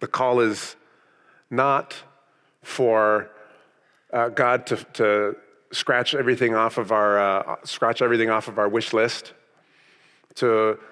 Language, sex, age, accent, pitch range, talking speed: English, male, 40-59, American, 100-115 Hz, 105 wpm